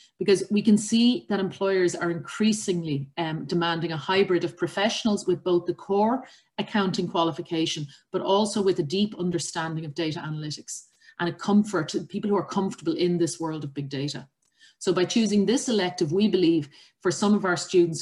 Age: 30-49